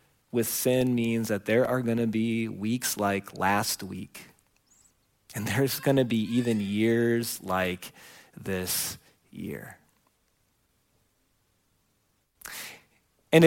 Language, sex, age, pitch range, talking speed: English, male, 30-49, 100-130 Hz, 100 wpm